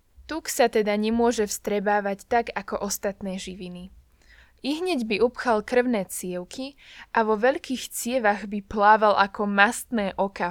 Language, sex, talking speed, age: Slovak, female, 130 wpm, 20-39